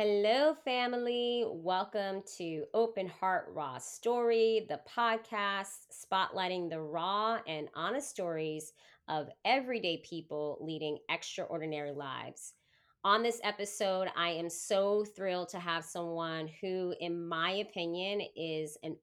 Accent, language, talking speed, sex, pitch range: American, English, 120 wpm, female, 155-220 Hz